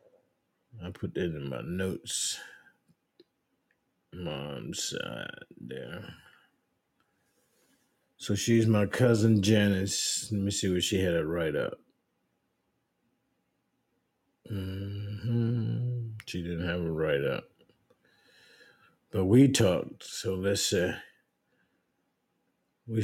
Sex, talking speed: male, 95 wpm